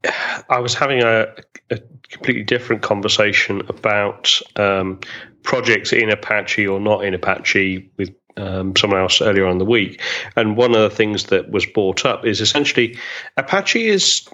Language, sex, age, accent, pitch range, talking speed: English, male, 30-49, British, 100-120 Hz, 165 wpm